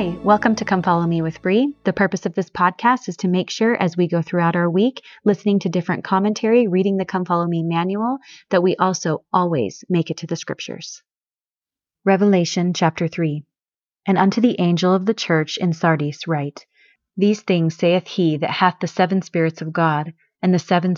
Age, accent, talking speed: 30-49, American, 195 wpm